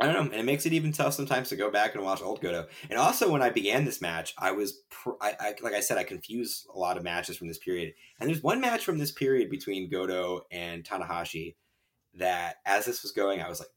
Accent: American